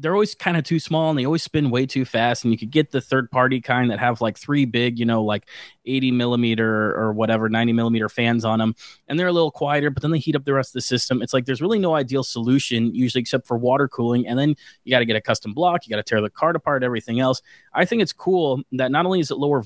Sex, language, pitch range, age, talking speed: male, English, 120-150 Hz, 20-39, 285 wpm